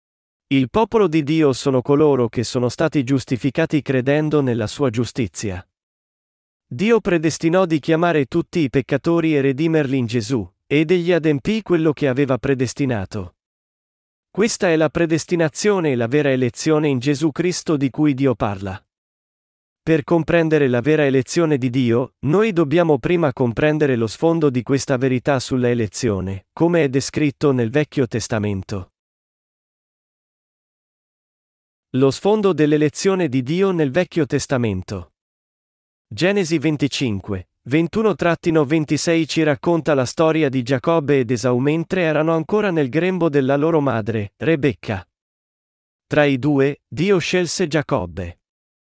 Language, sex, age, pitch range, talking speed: Italian, male, 40-59, 125-165 Hz, 130 wpm